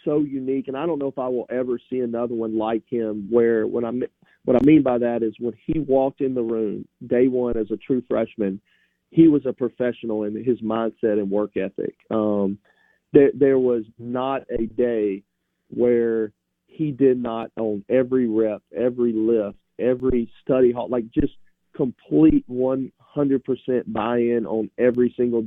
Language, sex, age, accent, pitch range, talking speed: English, male, 40-59, American, 110-125 Hz, 175 wpm